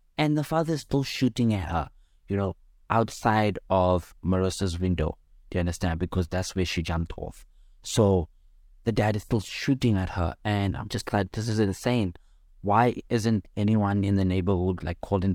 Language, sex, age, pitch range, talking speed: English, male, 20-39, 90-115 Hz, 180 wpm